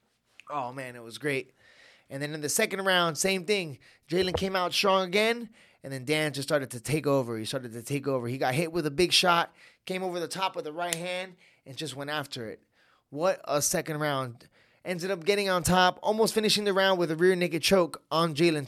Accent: American